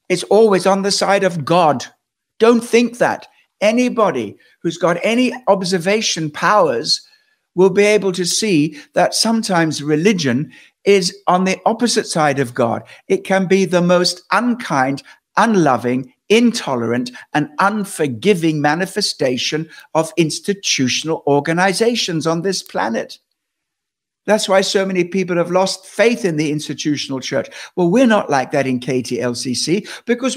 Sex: male